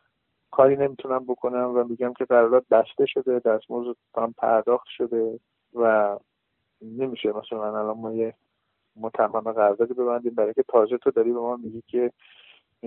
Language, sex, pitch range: Persian, male, 120-145 Hz